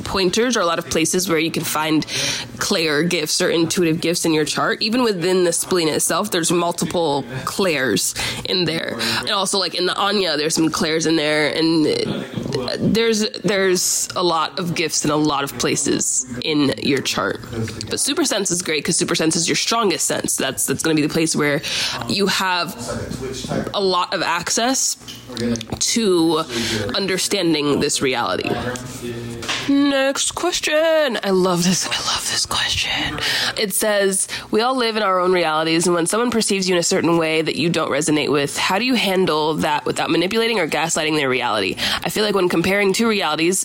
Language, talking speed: English, 185 wpm